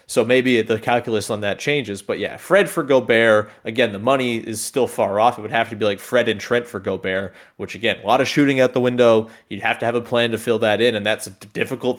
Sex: male